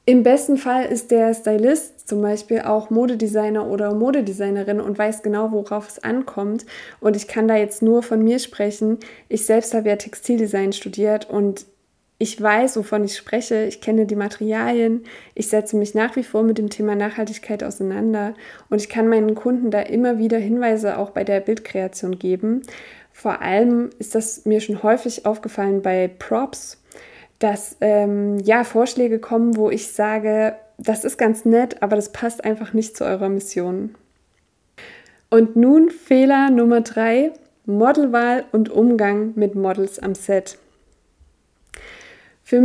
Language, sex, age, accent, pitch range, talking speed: German, female, 20-39, German, 210-240 Hz, 155 wpm